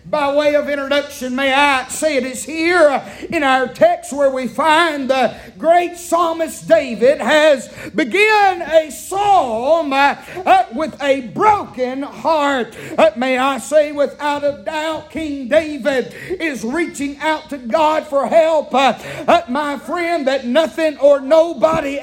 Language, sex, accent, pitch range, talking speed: English, male, American, 280-340 Hz, 135 wpm